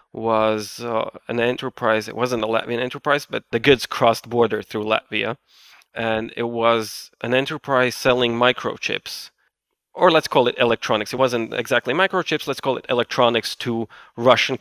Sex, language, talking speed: male, English, 155 wpm